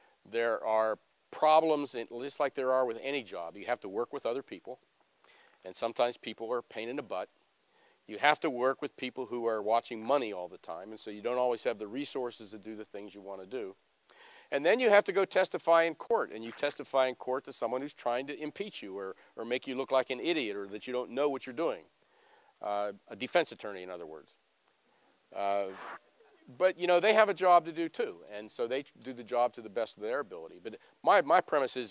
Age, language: 50-69, English